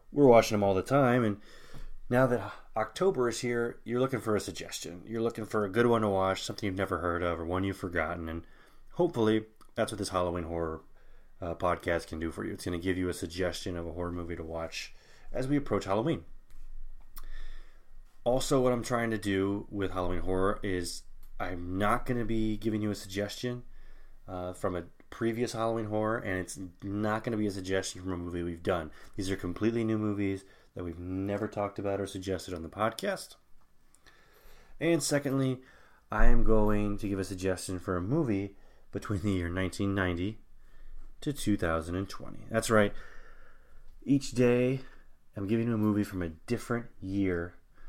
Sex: male